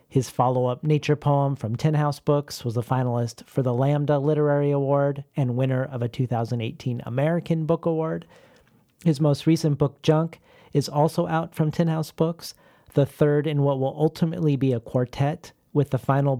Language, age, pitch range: English, 40-59, 125-150 Hz